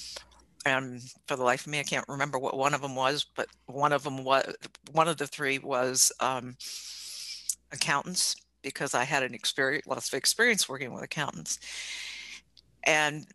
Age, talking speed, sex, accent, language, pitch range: 60-79, 170 wpm, female, American, English, 130-155 Hz